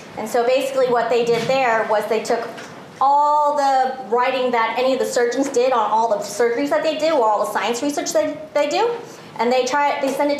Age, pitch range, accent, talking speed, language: 30-49, 225-280 Hz, American, 235 wpm, English